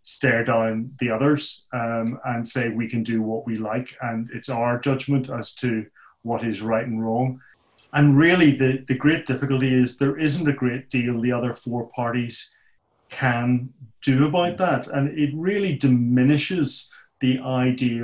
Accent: British